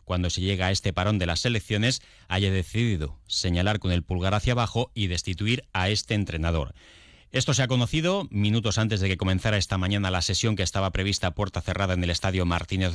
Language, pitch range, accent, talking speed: Spanish, 90-120 Hz, Spanish, 210 wpm